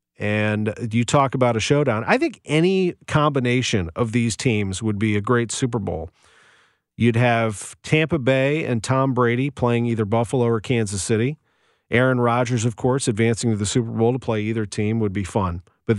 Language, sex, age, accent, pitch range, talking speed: English, male, 40-59, American, 105-125 Hz, 185 wpm